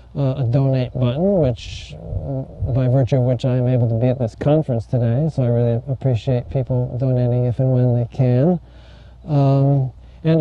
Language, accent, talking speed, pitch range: English, American, 180 wpm, 120-140 Hz